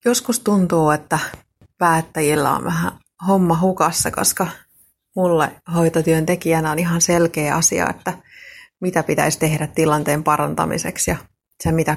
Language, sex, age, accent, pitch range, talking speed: Finnish, female, 30-49, native, 155-175 Hz, 120 wpm